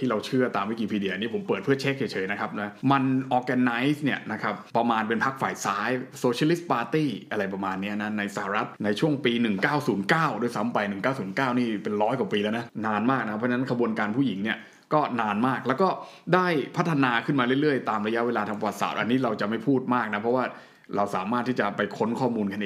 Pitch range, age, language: 110-145 Hz, 20-39, Thai